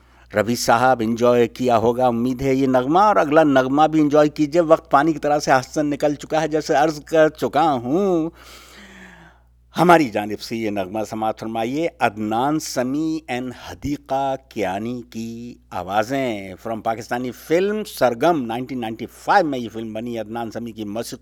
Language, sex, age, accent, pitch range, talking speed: English, male, 60-79, Indian, 110-155 Hz, 135 wpm